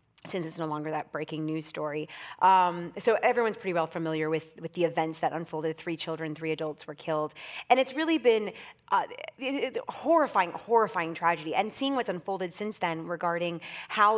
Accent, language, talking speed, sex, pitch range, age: American, English, 180 wpm, female, 170-210 Hz, 30-49